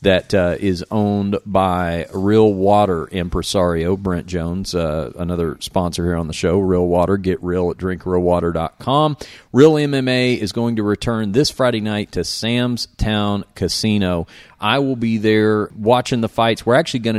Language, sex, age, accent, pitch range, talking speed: English, male, 40-59, American, 90-110 Hz, 160 wpm